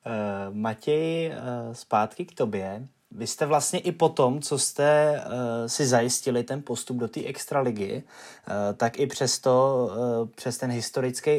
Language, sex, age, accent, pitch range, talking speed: Czech, male, 20-39, native, 115-130 Hz, 130 wpm